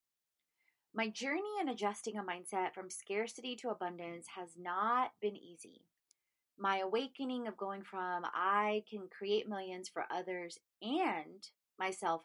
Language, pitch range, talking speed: English, 185-235 Hz, 130 wpm